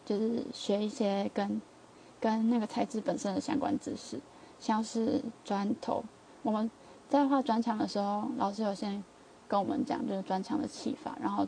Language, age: Chinese, 20-39